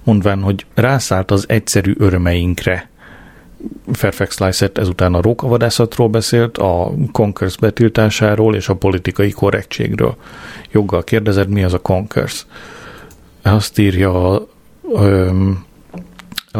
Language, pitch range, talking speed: Hungarian, 95-115 Hz, 100 wpm